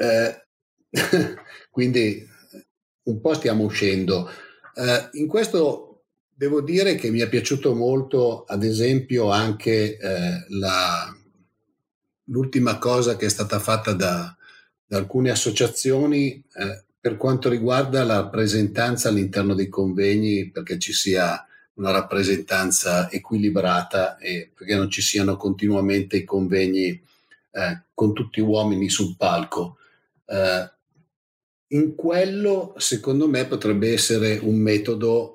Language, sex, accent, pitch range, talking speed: Italian, male, native, 100-130 Hz, 115 wpm